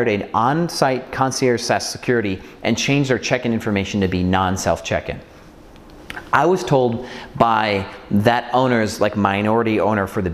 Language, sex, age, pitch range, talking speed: English, male, 30-49, 100-130 Hz, 165 wpm